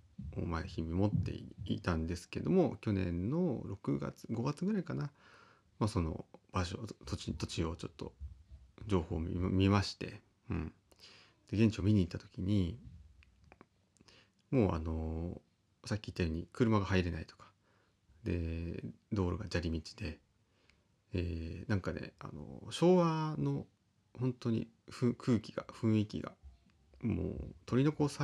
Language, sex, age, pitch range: Japanese, male, 30-49, 90-115 Hz